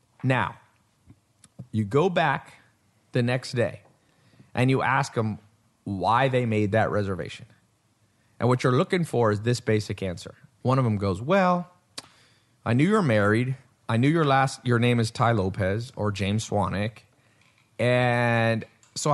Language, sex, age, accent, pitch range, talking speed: English, male, 30-49, American, 110-135 Hz, 150 wpm